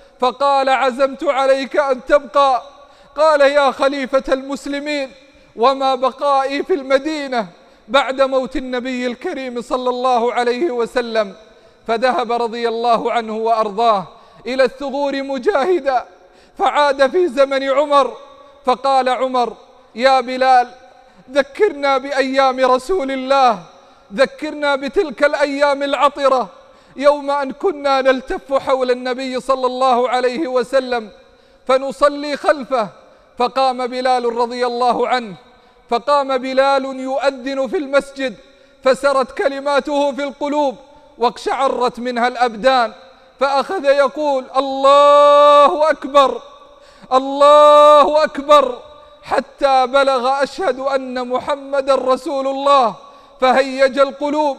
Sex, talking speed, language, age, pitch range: male, 100 wpm, Arabic, 40-59, 255-280 Hz